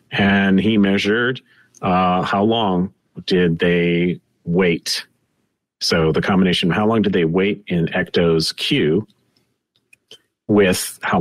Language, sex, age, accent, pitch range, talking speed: English, male, 40-59, American, 85-110 Hz, 125 wpm